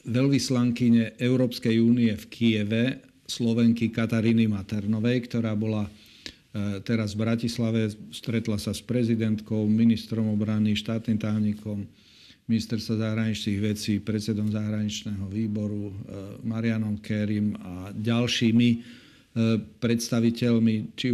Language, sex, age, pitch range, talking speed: Slovak, male, 50-69, 105-120 Hz, 95 wpm